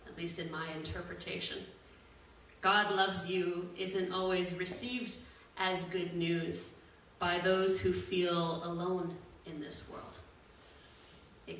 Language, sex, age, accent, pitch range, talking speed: English, female, 30-49, American, 165-185 Hz, 115 wpm